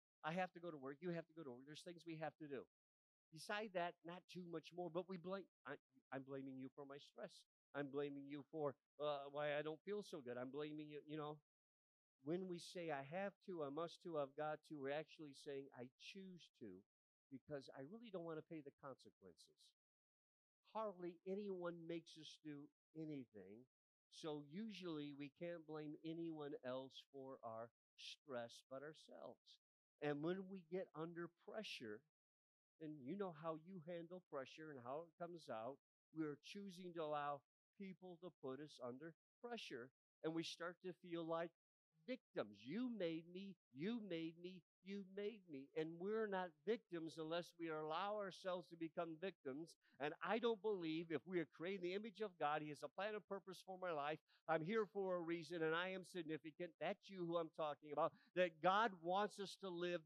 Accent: American